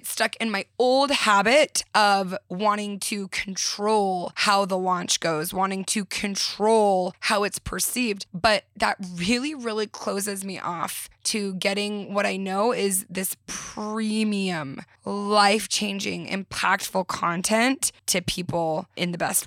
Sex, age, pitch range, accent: female, 20-39, 190-230 Hz, American